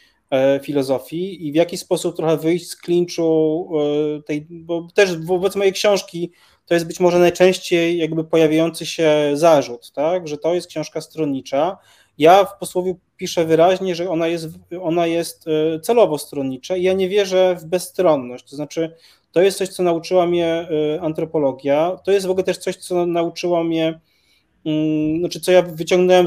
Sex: male